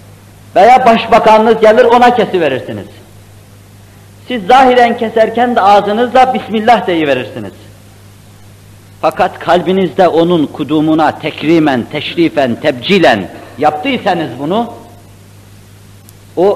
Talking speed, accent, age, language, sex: 80 wpm, native, 50-69, Turkish, male